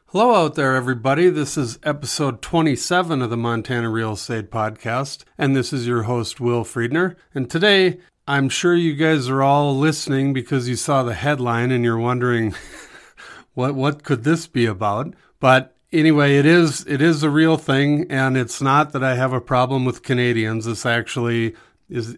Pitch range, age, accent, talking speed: 115-140 Hz, 50-69, American, 180 wpm